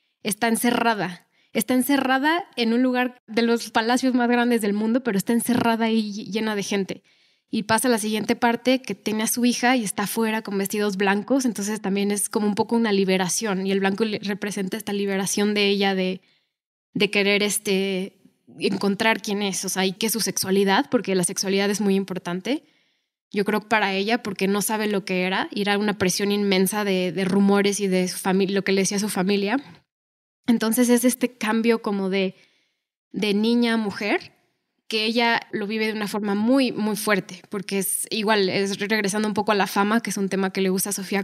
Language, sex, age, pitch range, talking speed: Spanish, female, 10-29, 195-225 Hz, 210 wpm